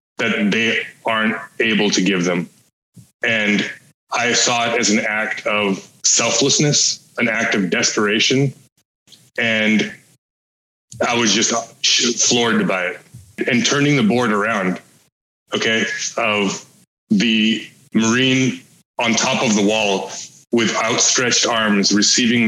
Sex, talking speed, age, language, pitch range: male, 120 wpm, 20-39, English, 105-130 Hz